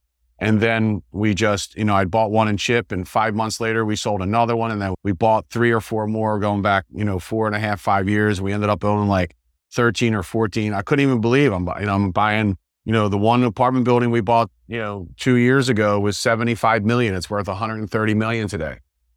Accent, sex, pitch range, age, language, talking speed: American, male, 100-120 Hz, 40-59, English, 235 wpm